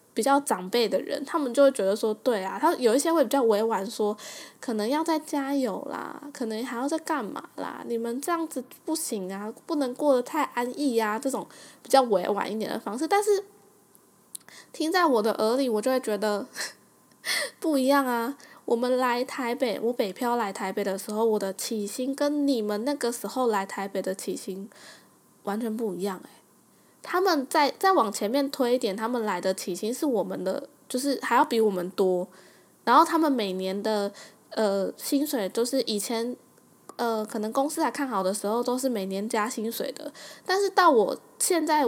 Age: 10-29